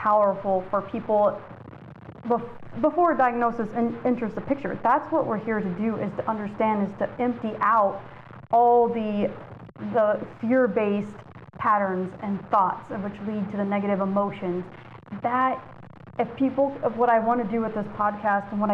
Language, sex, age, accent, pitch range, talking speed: English, female, 30-49, American, 205-240 Hz, 165 wpm